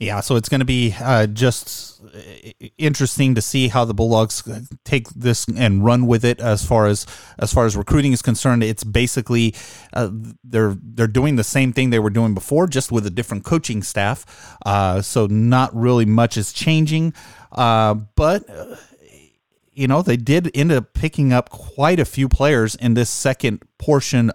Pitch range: 110-135 Hz